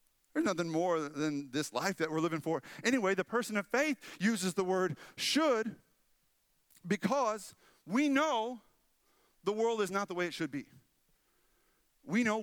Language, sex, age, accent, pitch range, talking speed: English, male, 40-59, American, 150-225 Hz, 160 wpm